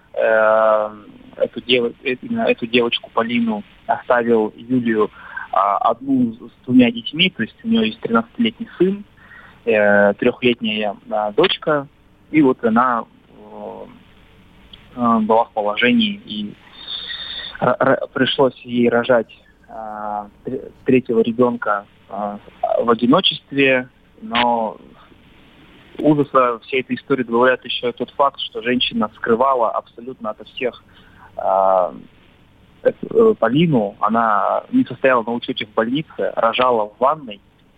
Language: Russian